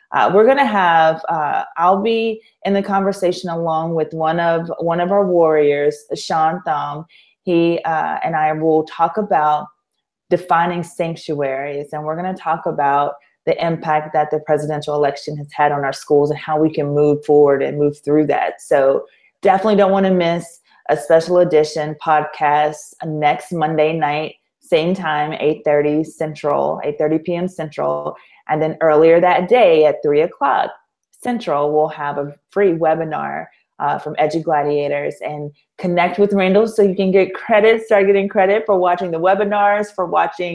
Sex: female